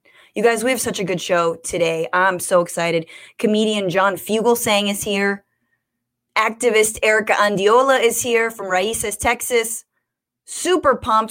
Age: 20-39